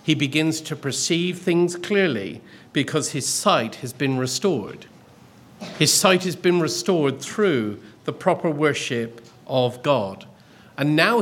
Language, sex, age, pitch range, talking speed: English, male, 50-69, 135-180 Hz, 135 wpm